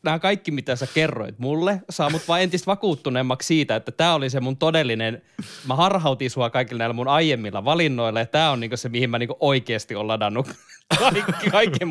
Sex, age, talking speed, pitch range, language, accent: male, 20-39, 185 wpm, 115-160 Hz, Finnish, native